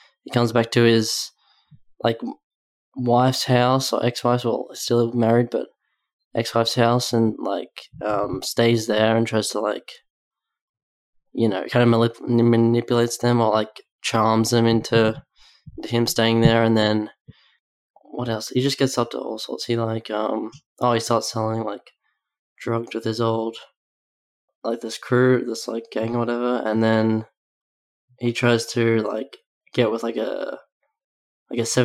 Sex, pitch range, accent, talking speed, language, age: male, 110-125 Hz, Australian, 155 wpm, English, 10-29